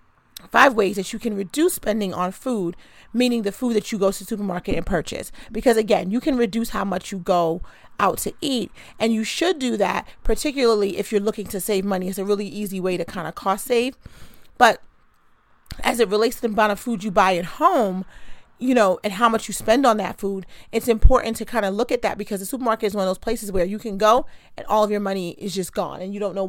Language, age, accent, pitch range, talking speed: English, 40-59, American, 190-225 Hz, 245 wpm